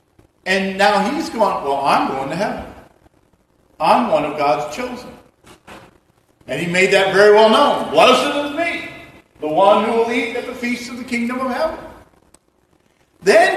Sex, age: male, 50-69